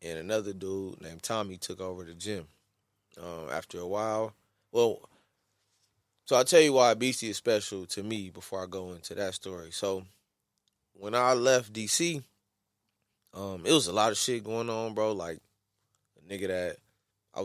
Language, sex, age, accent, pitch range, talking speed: English, male, 20-39, American, 95-120 Hz, 170 wpm